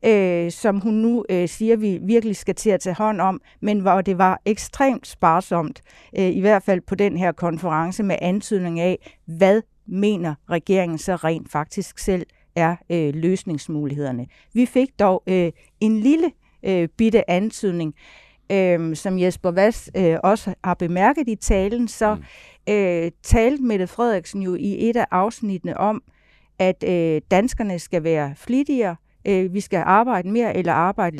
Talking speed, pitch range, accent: 160 wpm, 175-215 Hz, native